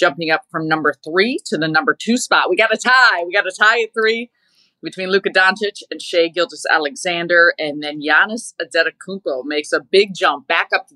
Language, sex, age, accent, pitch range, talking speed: English, female, 30-49, American, 150-190 Hz, 205 wpm